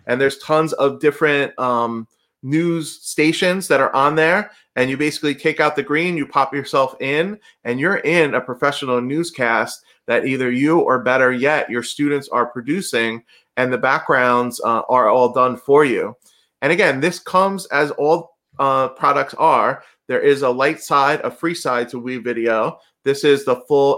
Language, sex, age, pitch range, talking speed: English, male, 30-49, 120-150 Hz, 180 wpm